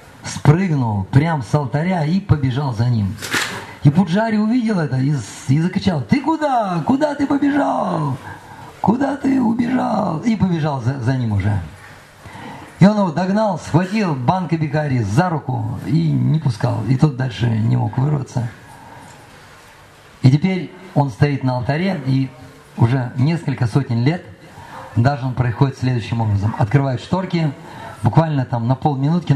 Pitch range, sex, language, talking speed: 125-170 Hz, male, Russian, 140 wpm